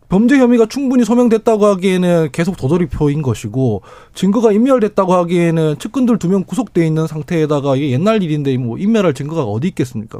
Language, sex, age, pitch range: Korean, male, 20-39, 150-215 Hz